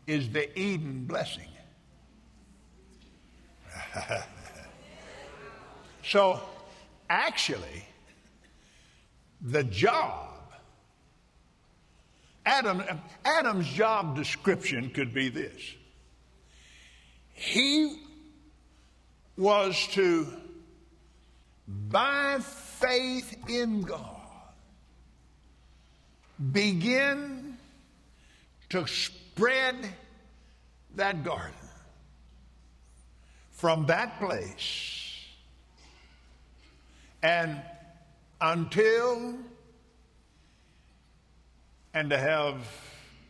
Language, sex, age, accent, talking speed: English, male, 60-79, American, 50 wpm